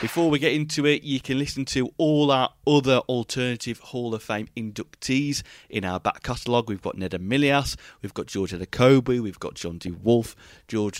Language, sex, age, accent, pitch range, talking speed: English, male, 30-49, British, 100-130 Hz, 185 wpm